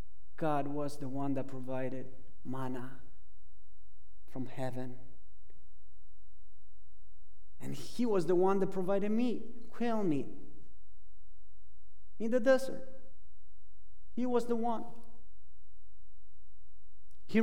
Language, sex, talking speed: English, male, 95 wpm